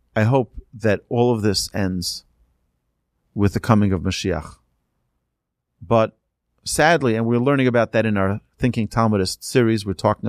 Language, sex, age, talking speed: English, male, 40-59, 150 wpm